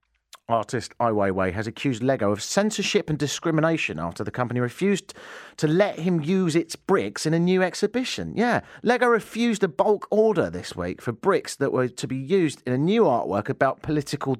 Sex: male